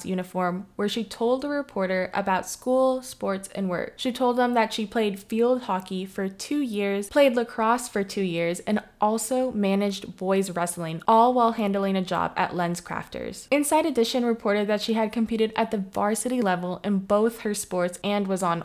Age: 20-39